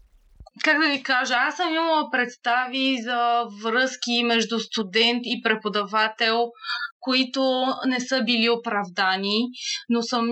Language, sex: Bulgarian, female